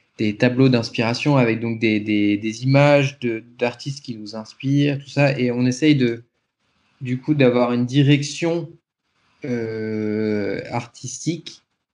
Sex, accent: male, French